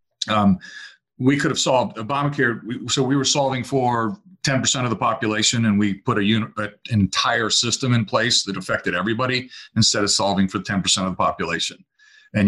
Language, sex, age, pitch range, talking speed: English, male, 40-59, 105-130 Hz, 190 wpm